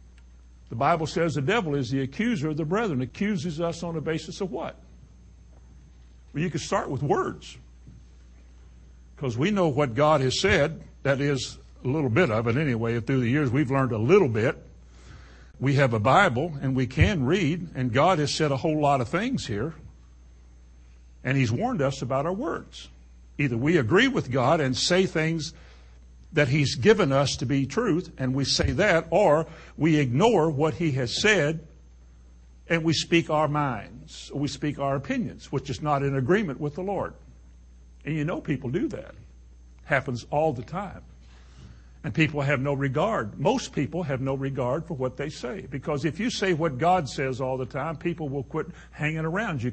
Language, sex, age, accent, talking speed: English, male, 60-79, American, 190 wpm